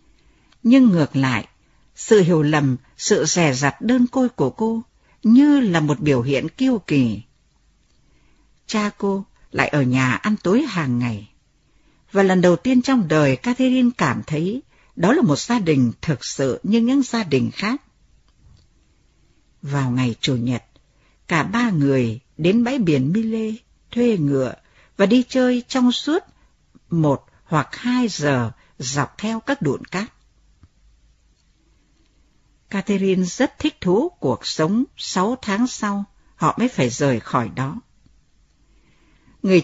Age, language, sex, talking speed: 60-79, Vietnamese, female, 140 wpm